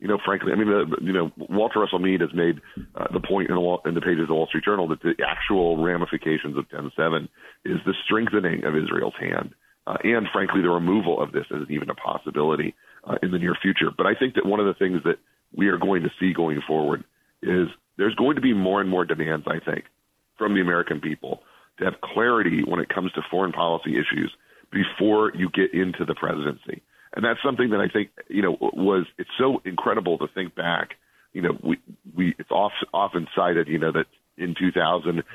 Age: 40-59